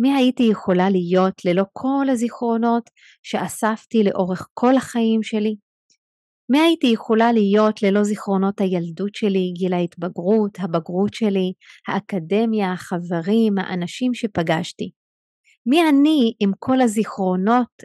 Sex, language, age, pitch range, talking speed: female, Hebrew, 30-49, 195-230 Hz, 110 wpm